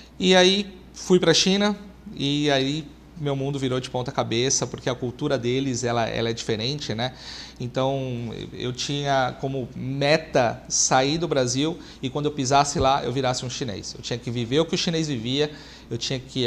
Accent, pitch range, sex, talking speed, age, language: Brazilian, 130-150 Hz, male, 190 wpm, 40-59, Portuguese